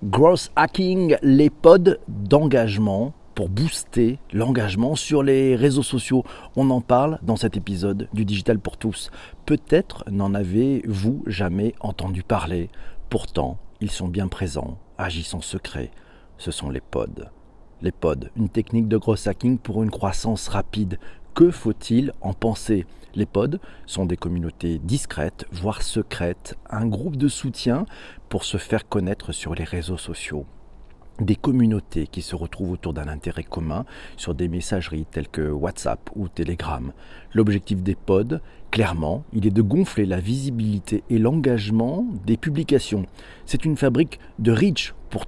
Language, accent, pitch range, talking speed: French, French, 95-125 Hz, 150 wpm